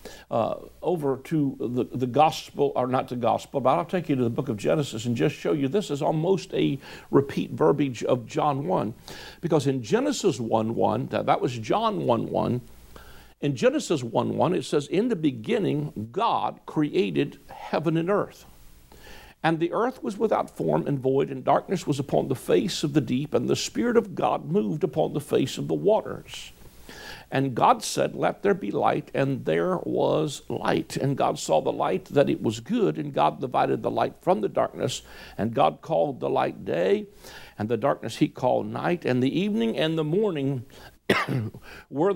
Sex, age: male, 60-79